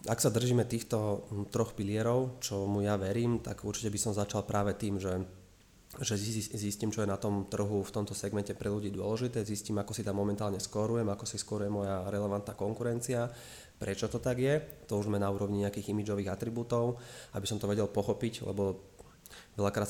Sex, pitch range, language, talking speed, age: male, 95-105 Hz, Slovak, 185 wpm, 20-39